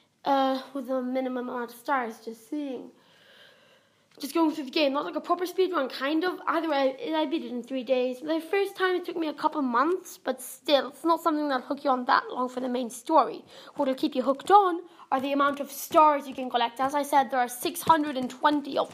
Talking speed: 240 wpm